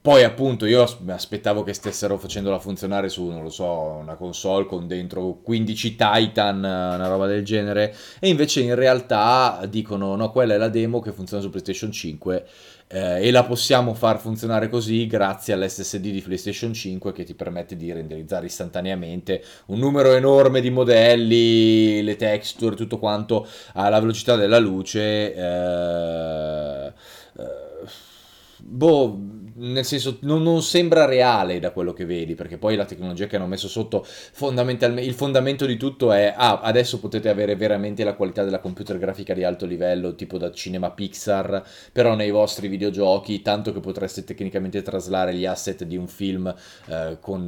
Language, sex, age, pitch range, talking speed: Italian, male, 30-49, 95-115 Hz, 160 wpm